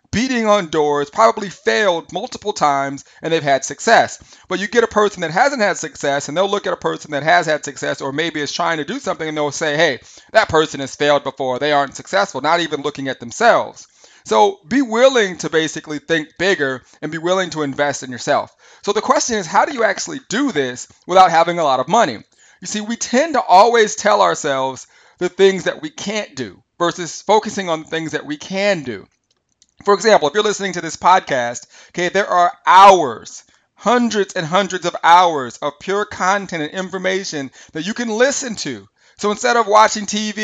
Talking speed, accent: 205 wpm, American